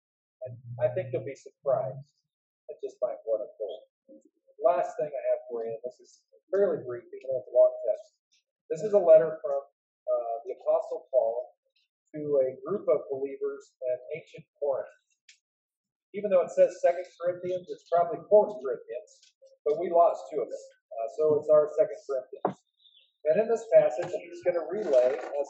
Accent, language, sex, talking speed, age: American, English, male, 180 wpm, 40-59